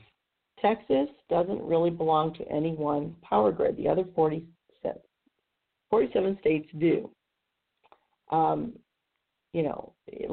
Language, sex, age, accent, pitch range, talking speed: English, female, 50-69, American, 160-180 Hz, 110 wpm